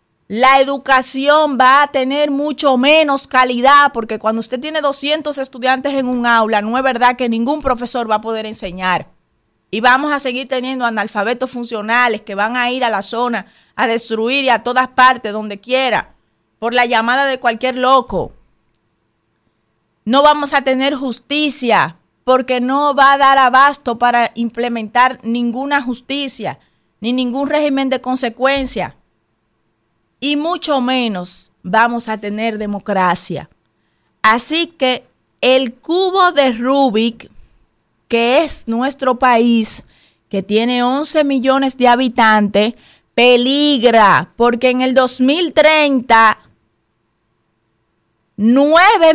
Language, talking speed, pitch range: Spanish, 125 wpm, 220-275 Hz